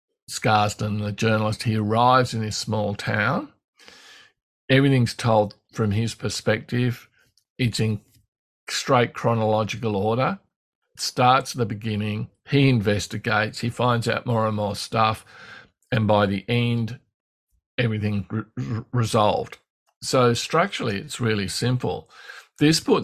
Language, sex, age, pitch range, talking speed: English, male, 50-69, 105-120 Hz, 115 wpm